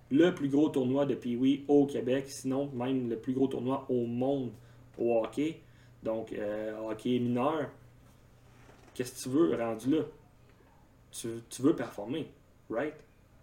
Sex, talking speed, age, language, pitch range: male, 145 wpm, 30-49, French, 120-140 Hz